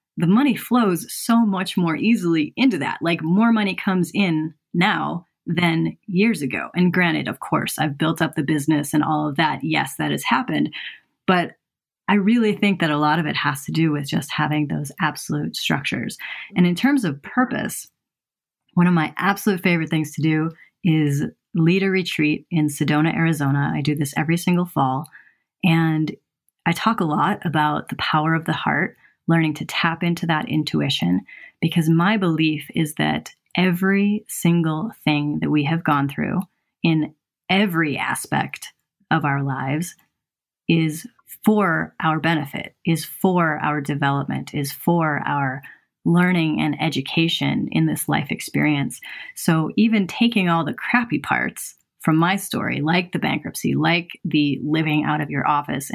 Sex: female